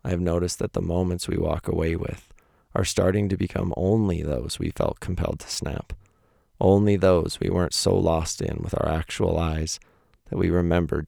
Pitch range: 80-95 Hz